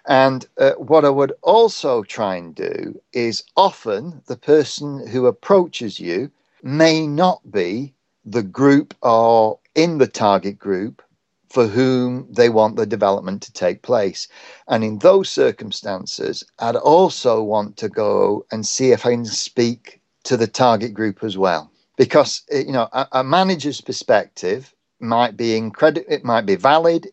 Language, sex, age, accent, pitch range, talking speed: English, male, 50-69, British, 110-145 Hz, 155 wpm